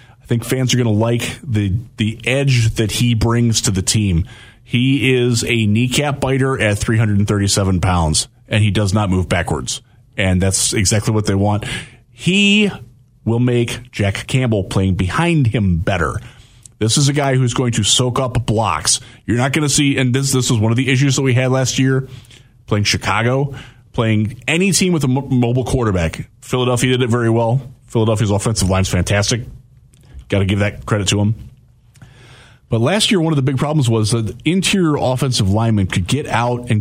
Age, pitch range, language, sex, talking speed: 20-39, 105-130 Hz, English, male, 190 wpm